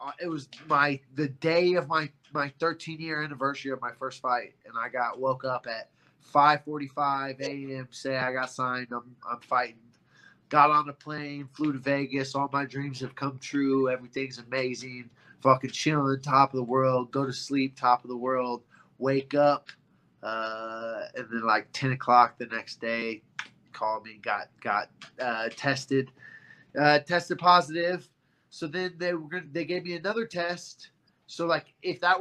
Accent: American